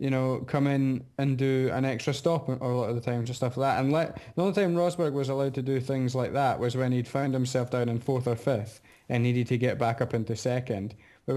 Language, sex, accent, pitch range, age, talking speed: English, male, British, 115-140 Hz, 20-39, 265 wpm